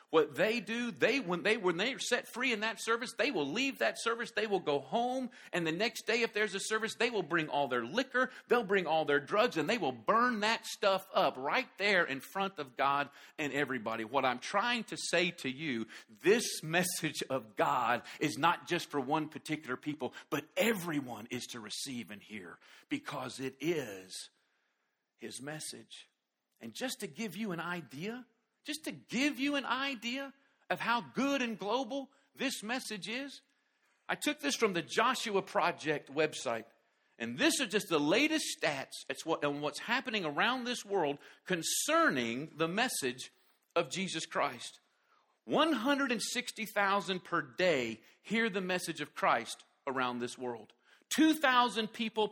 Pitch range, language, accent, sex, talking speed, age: 150-240 Hz, English, American, male, 165 wpm, 50-69